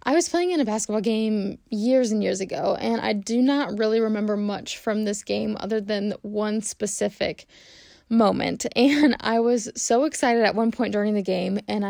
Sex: female